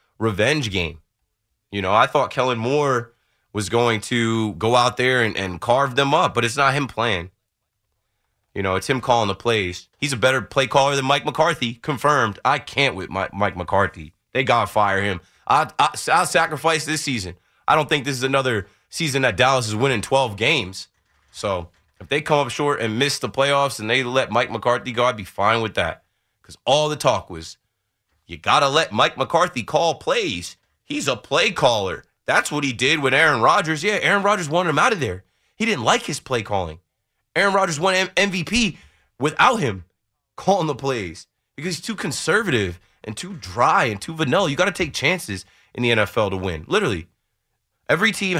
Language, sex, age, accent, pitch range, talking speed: English, male, 20-39, American, 105-150 Hz, 195 wpm